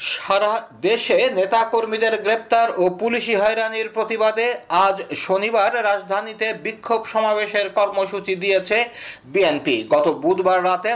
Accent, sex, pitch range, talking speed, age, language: native, male, 195-225 Hz, 105 wpm, 50-69, Bengali